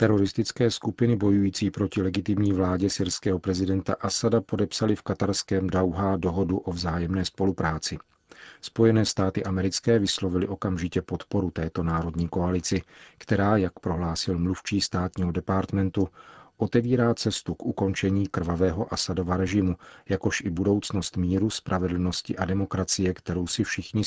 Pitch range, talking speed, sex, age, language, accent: 90-100 Hz, 120 wpm, male, 40-59, Czech, native